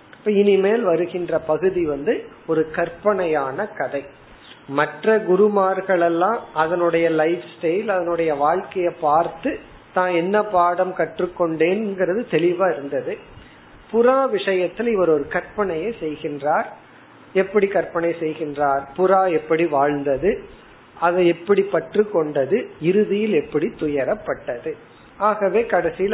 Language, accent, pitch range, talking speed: Tamil, native, 150-190 Hz, 85 wpm